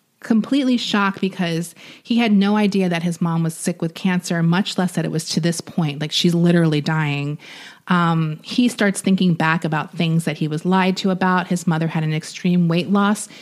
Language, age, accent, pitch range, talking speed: English, 30-49, American, 165-195 Hz, 205 wpm